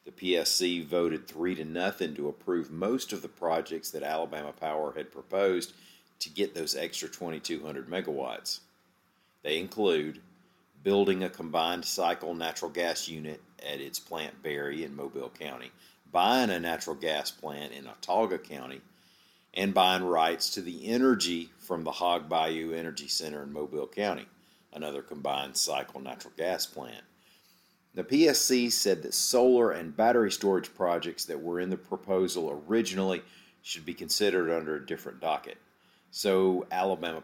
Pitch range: 80-95 Hz